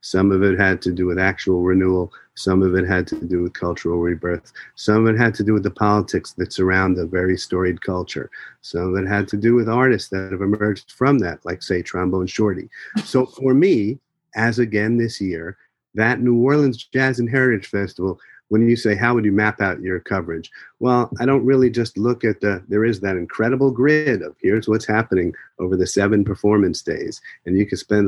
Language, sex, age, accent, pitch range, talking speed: English, male, 40-59, American, 95-120 Hz, 215 wpm